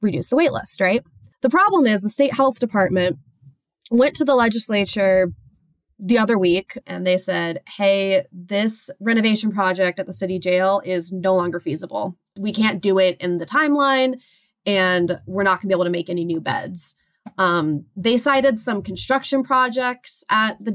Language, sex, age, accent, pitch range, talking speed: English, female, 20-39, American, 180-220 Hz, 175 wpm